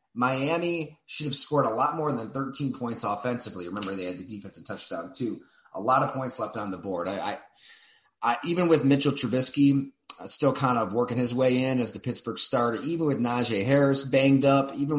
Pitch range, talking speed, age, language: 95-130 Hz, 210 wpm, 30-49, English